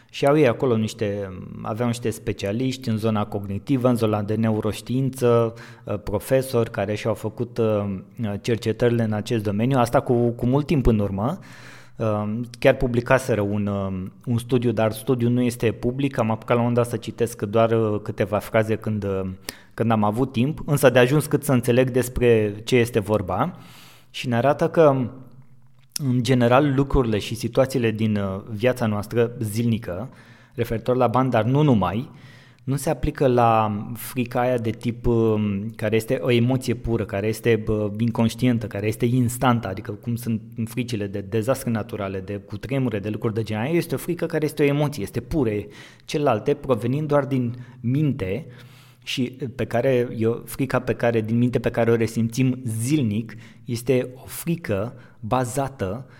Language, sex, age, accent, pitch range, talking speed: Romanian, male, 20-39, native, 110-130 Hz, 160 wpm